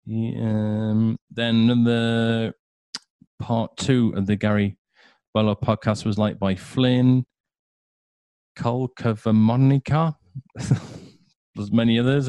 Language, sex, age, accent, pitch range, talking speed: English, male, 40-59, British, 100-125 Hz, 100 wpm